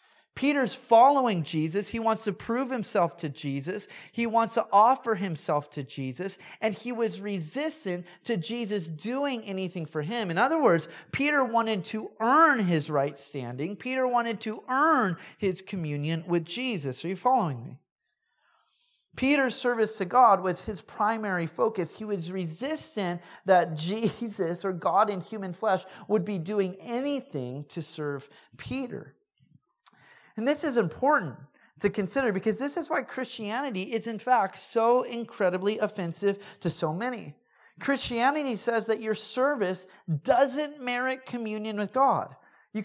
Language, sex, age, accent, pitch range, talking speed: English, male, 30-49, American, 180-245 Hz, 145 wpm